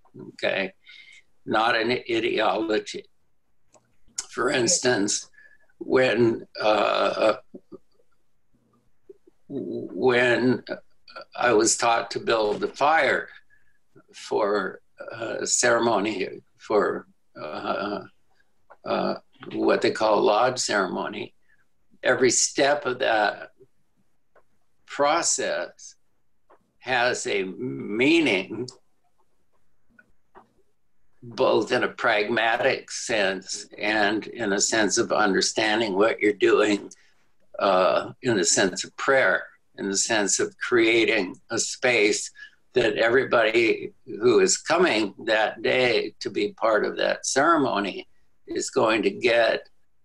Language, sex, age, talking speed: English, male, 60-79, 95 wpm